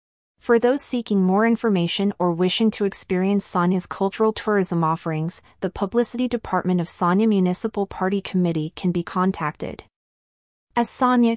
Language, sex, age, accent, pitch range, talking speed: English, female, 30-49, American, 175-215 Hz, 135 wpm